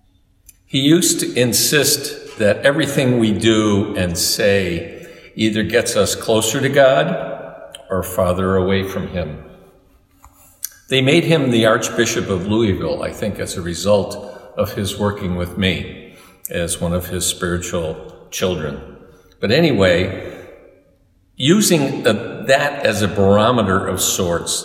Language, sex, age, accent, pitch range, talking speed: English, male, 50-69, American, 95-120 Hz, 130 wpm